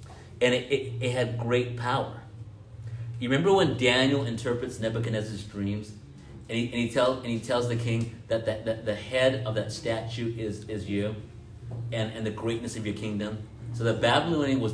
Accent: American